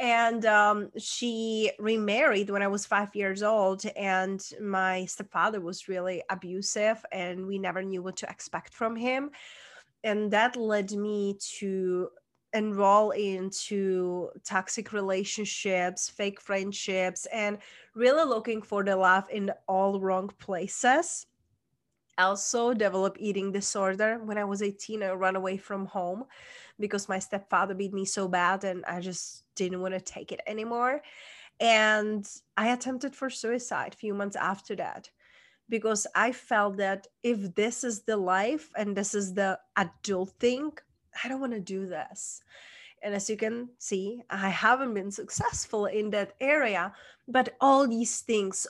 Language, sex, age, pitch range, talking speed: English, female, 20-39, 195-225 Hz, 150 wpm